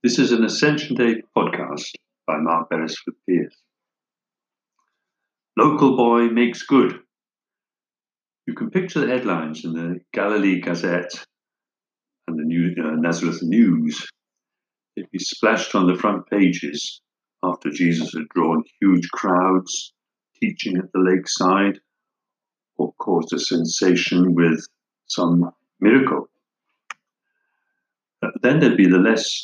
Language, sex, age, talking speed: English, male, 60-79, 120 wpm